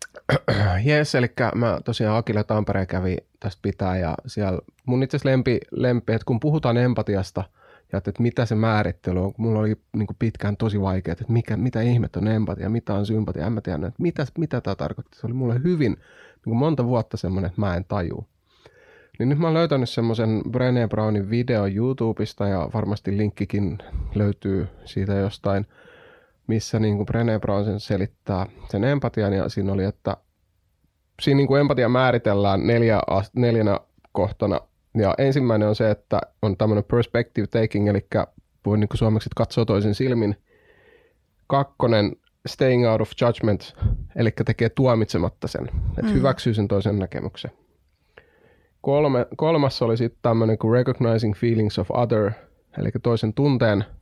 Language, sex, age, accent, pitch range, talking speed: Finnish, male, 30-49, native, 100-120 Hz, 155 wpm